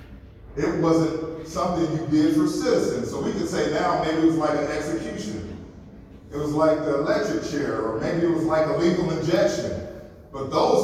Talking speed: 190 wpm